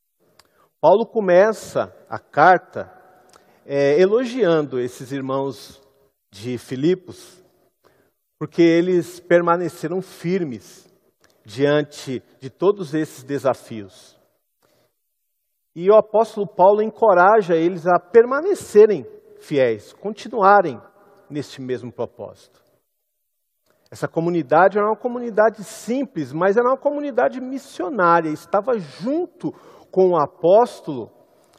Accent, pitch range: Brazilian, 145-220 Hz